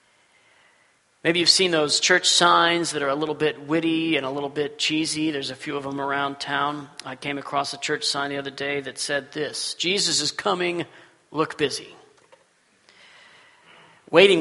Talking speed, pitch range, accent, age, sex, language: 175 wpm, 145-175 Hz, American, 40-59, male, English